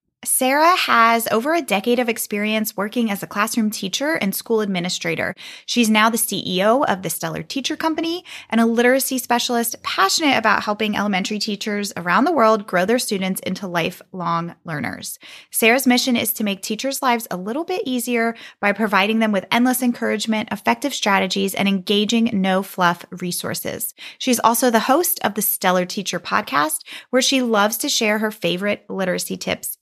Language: English